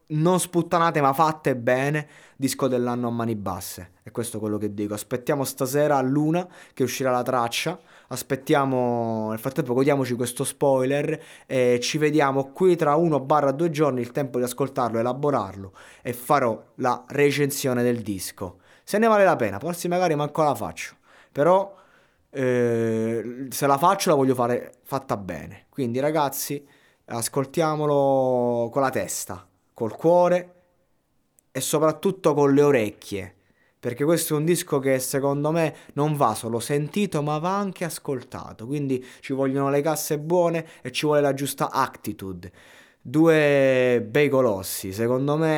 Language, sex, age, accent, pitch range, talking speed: Italian, male, 20-39, native, 115-150 Hz, 150 wpm